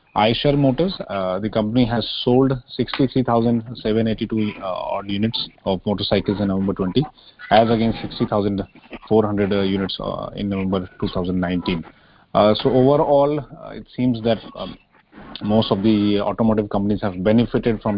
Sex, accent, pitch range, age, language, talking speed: male, Indian, 100-115 Hz, 30-49, English, 135 wpm